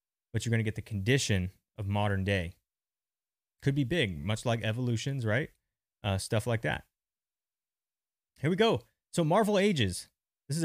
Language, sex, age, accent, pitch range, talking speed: English, male, 30-49, American, 100-135 Hz, 165 wpm